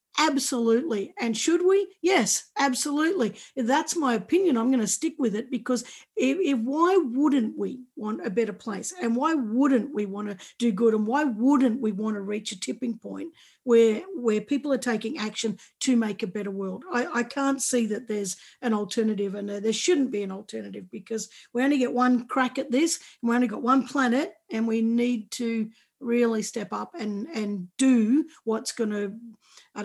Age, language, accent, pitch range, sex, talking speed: 50-69, English, Australian, 220-280 Hz, female, 190 wpm